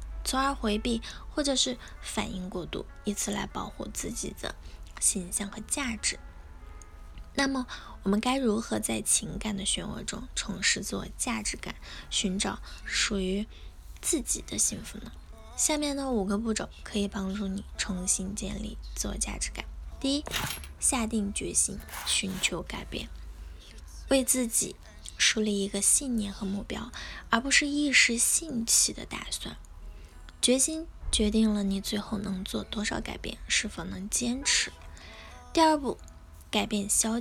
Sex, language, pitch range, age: female, Chinese, 200-265 Hz, 10-29